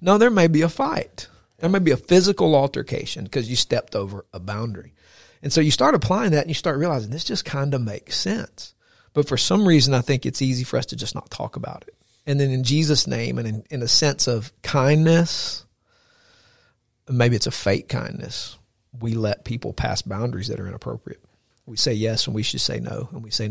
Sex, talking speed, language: male, 220 wpm, English